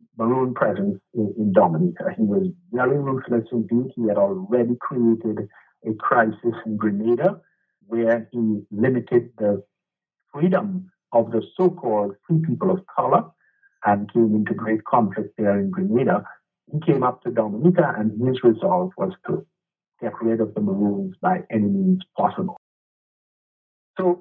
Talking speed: 140 wpm